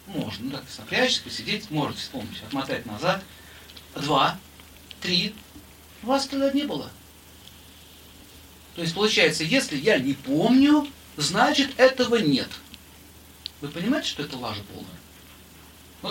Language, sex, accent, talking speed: Russian, male, native, 120 wpm